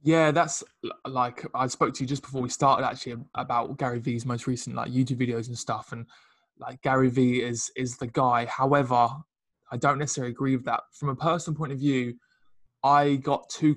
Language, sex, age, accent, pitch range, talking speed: English, male, 20-39, British, 125-150 Hz, 200 wpm